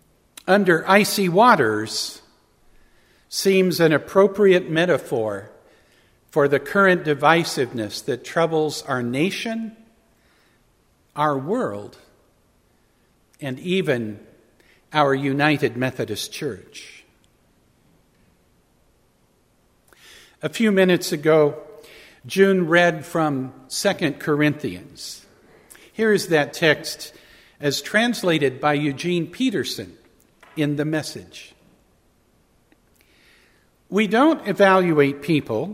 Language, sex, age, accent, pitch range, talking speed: English, male, 60-79, American, 135-190 Hz, 80 wpm